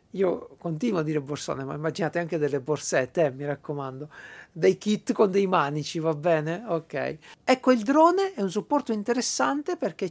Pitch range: 160-235 Hz